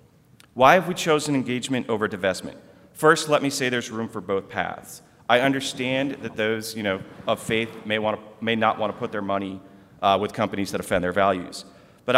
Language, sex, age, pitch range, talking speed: English, male, 40-59, 95-125 Hz, 205 wpm